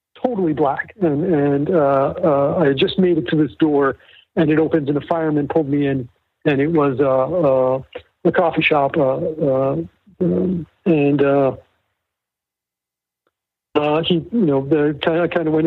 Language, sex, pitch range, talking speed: English, male, 135-165 Hz, 175 wpm